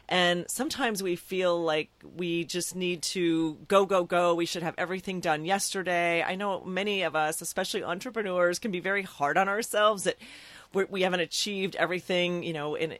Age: 40-59